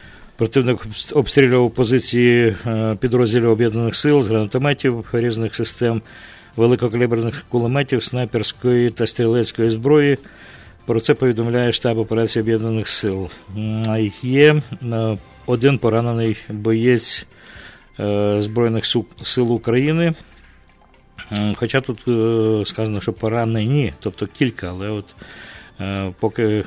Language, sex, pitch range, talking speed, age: English, male, 105-125 Hz, 95 wpm, 50-69